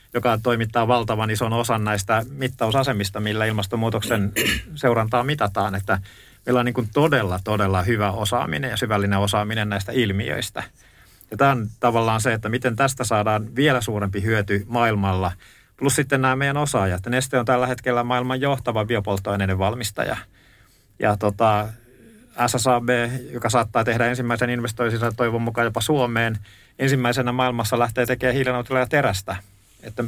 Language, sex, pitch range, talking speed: Finnish, male, 105-125 Hz, 140 wpm